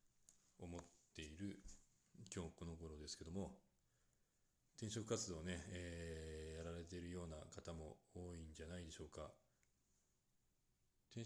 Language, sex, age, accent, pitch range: Japanese, male, 40-59, native, 80-100 Hz